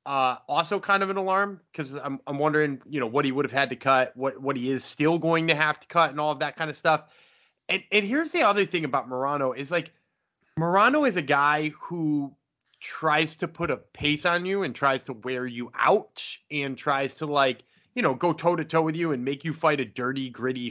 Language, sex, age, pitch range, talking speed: English, male, 20-39, 140-185 Hz, 240 wpm